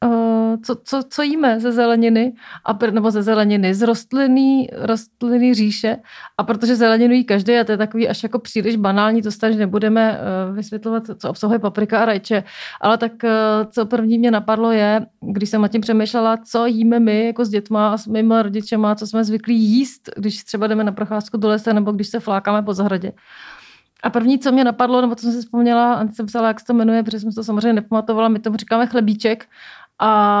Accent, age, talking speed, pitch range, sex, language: native, 30-49, 210 wpm, 210-235 Hz, female, Czech